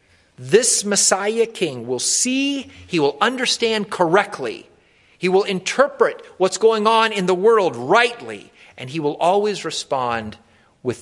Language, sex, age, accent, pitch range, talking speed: English, male, 40-59, American, 125-210 Hz, 135 wpm